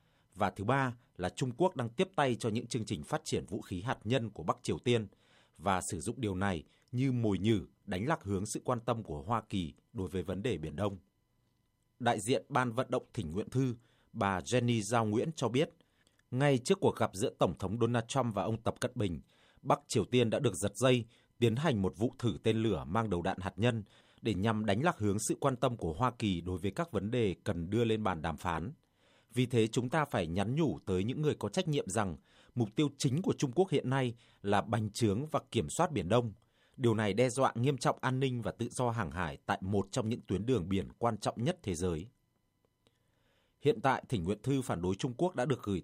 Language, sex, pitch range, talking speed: Vietnamese, male, 100-125 Hz, 240 wpm